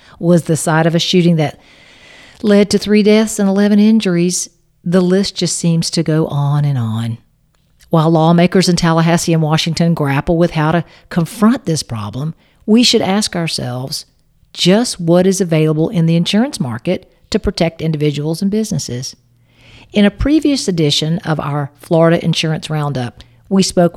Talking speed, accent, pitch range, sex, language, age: 160 wpm, American, 145-185 Hz, female, English, 50-69